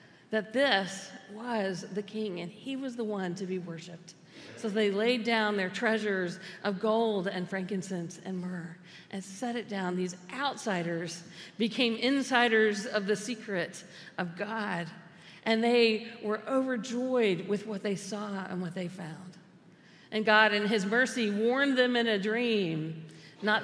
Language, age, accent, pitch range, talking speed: English, 50-69, American, 180-225 Hz, 155 wpm